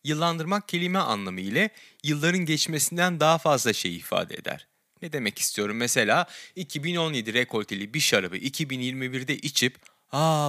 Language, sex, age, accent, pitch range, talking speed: Turkish, male, 30-49, native, 120-170 Hz, 125 wpm